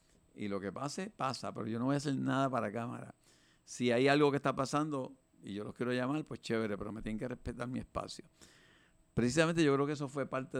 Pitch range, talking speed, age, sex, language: 110-135 Hz, 230 wpm, 50-69, male, Spanish